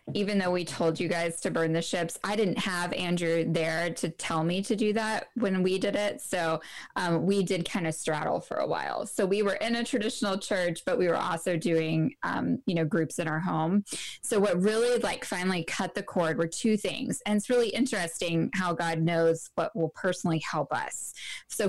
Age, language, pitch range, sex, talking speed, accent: 10-29, English, 175-225 Hz, female, 215 wpm, American